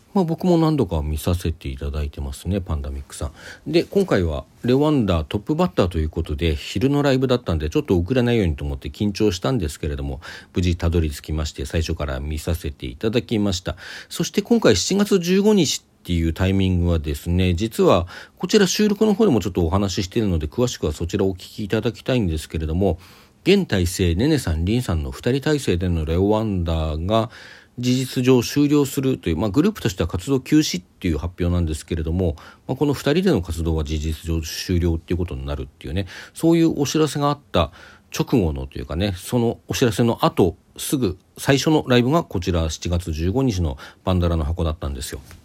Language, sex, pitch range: Japanese, male, 85-125 Hz